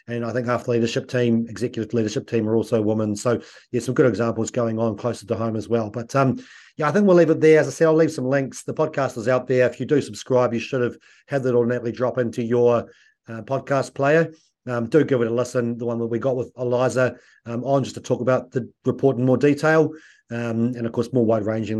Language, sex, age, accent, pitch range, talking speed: English, male, 30-49, Australian, 115-135 Hz, 255 wpm